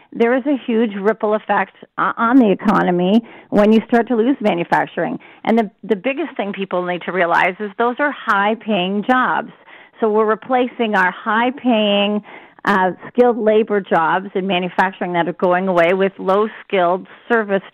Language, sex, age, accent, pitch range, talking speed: English, female, 40-59, American, 195-230 Hz, 170 wpm